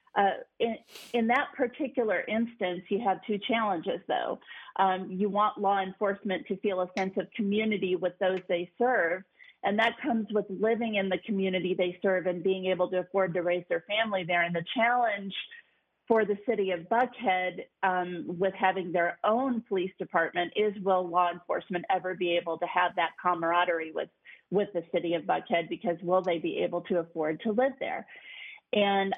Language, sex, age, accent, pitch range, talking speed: English, female, 40-59, American, 185-220 Hz, 185 wpm